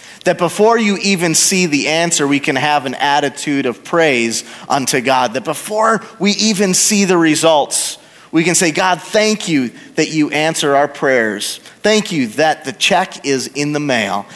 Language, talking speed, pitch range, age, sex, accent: English, 180 wpm, 140-170 Hz, 30-49, male, American